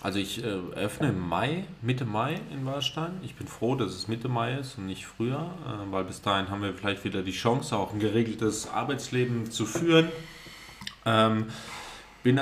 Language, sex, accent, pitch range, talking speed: German, male, German, 100-115 Hz, 190 wpm